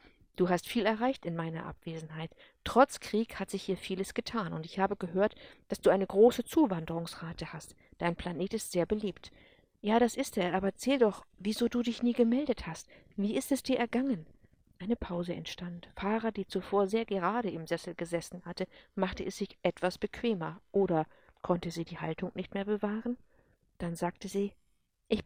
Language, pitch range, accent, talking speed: English, 175-225 Hz, German, 180 wpm